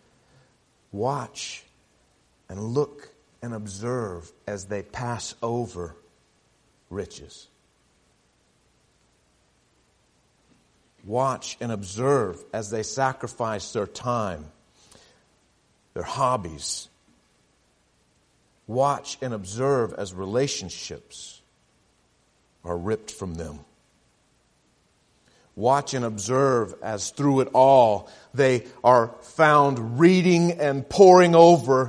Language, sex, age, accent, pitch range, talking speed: English, male, 50-69, American, 120-195 Hz, 80 wpm